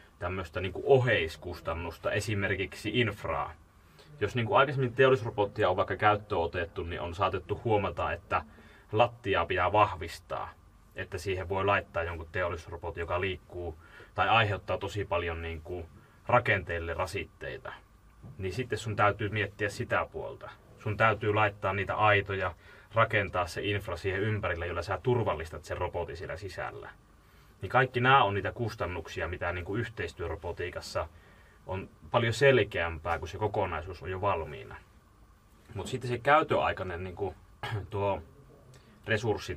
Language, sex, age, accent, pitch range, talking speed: Finnish, male, 30-49, native, 90-105 Hz, 130 wpm